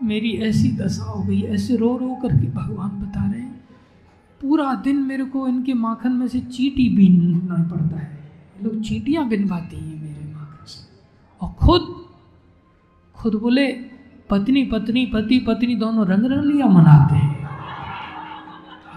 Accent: native